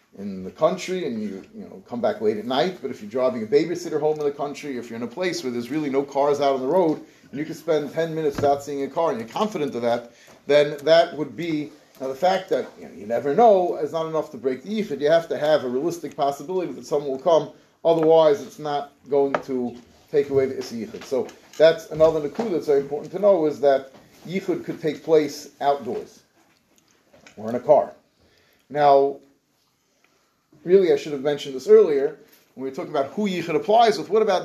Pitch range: 145-195 Hz